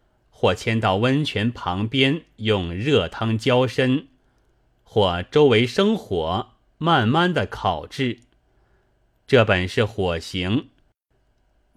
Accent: native